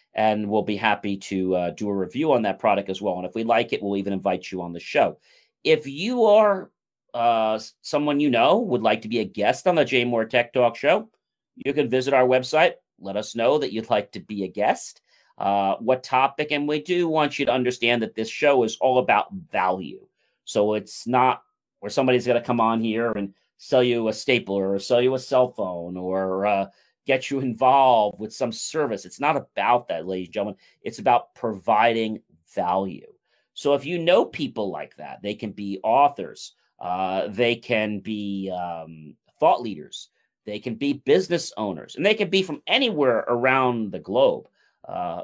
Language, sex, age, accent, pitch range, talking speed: English, male, 40-59, American, 100-130 Hz, 200 wpm